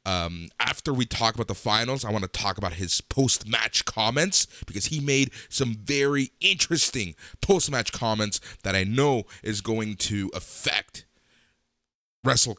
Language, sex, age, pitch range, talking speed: English, male, 30-49, 85-125 Hz, 150 wpm